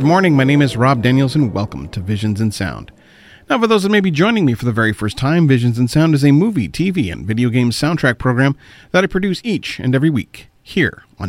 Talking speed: 250 wpm